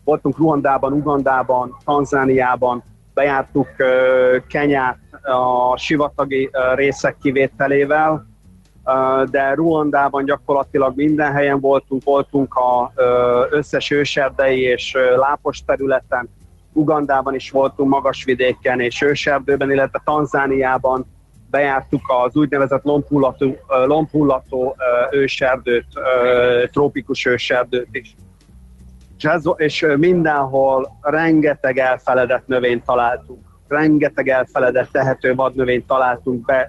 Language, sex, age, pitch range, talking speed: Hungarian, male, 30-49, 125-140 Hz, 85 wpm